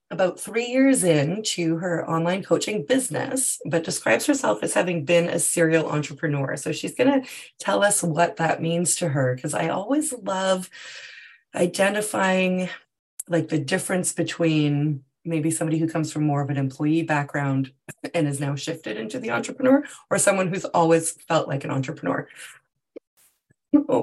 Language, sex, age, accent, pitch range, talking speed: English, female, 20-39, American, 150-195 Hz, 155 wpm